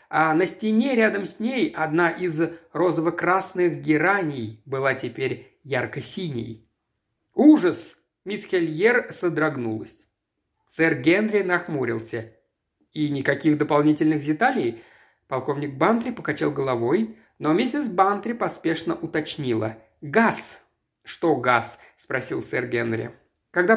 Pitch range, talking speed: 150-215 Hz, 100 wpm